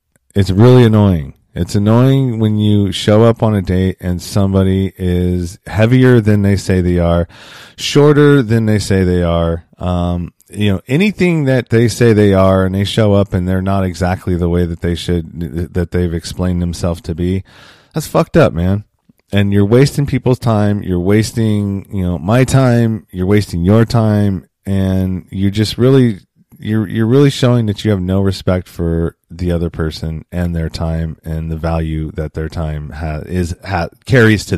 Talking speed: 180 wpm